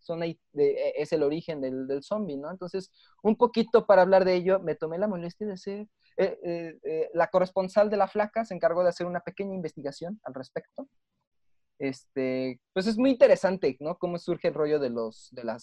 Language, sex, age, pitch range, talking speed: Spanish, male, 20-39, 145-215 Hz, 205 wpm